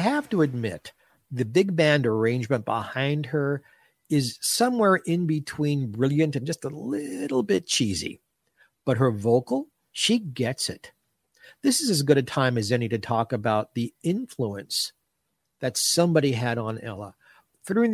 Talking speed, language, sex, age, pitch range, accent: 150 wpm, English, male, 50-69, 110-155 Hz, American